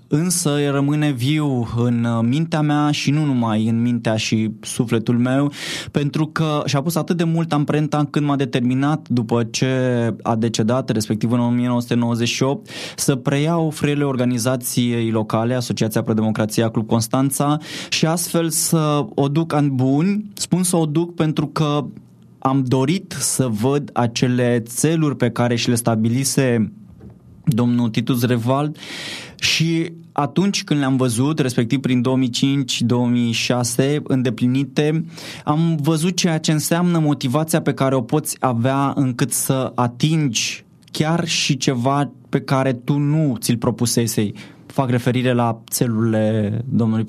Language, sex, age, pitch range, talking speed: Romanian, male, 20-39, 120-150 Hz, 135 wpm